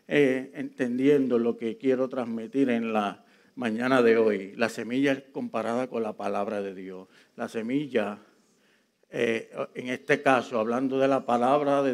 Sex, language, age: male, Spanish, 50-69